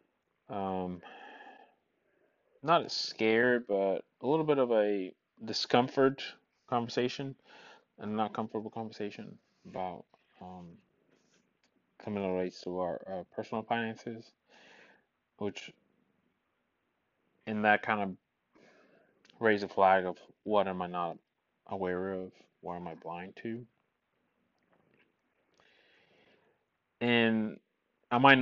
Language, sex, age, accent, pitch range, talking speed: English, male, 20-39, American, 90-115 Hz, 105 wpm